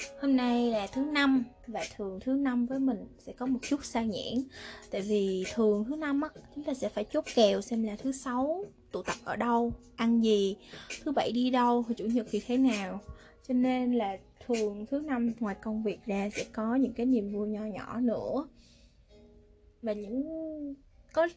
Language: Vietnamese